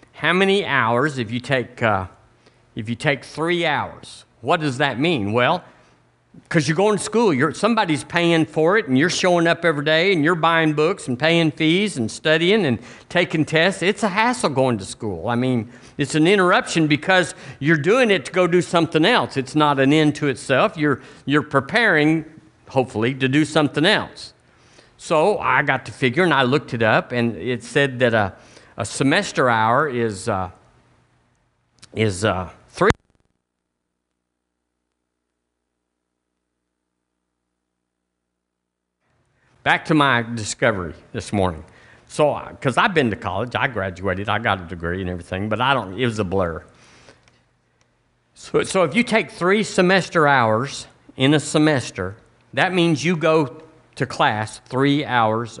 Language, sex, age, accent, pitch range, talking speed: English, male, 50-69, American, 105-160 Hz, 160 wpm